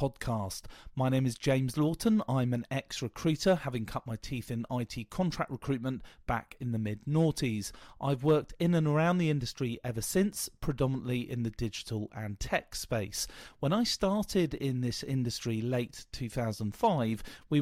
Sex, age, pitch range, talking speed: male, 40-59, 110-150 Hz, 155 wpm